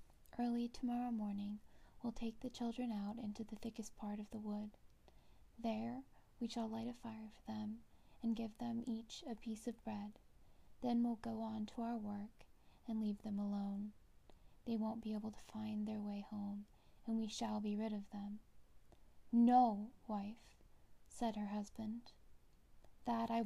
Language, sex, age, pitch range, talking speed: English, female, 10-29, 210-235 Hz, 165 wpm